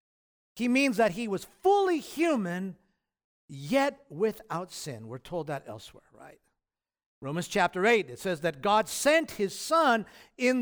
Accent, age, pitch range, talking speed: American, 50-69, 155-230 Hz, 145 wpm